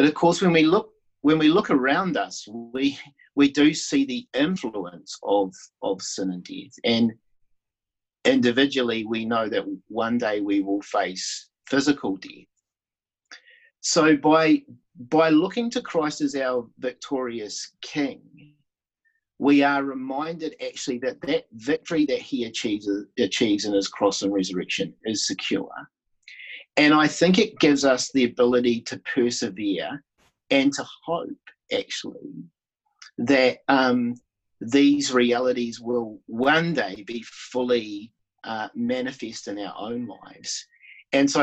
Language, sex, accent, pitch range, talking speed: English, male, Australian, 115-160 Hz, 135 wpm